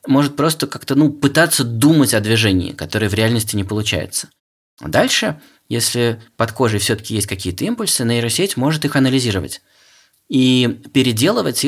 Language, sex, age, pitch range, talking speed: Russian, male, 20-39, 105-135 Hz, 145 wpm